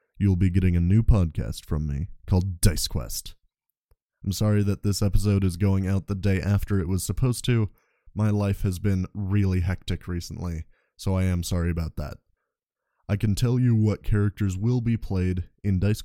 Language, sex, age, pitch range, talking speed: English, male, 20-39, 90-110 Hz, 185 wpm